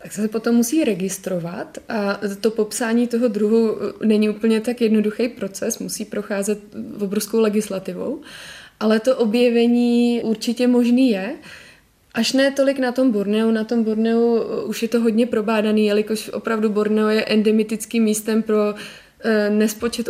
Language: Czech